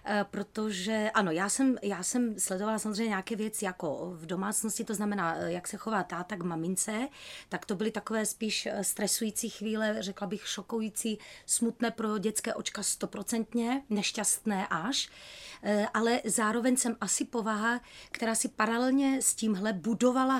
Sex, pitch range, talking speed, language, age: female, 200-230 Hz, 140 wpm, Czech, 30-49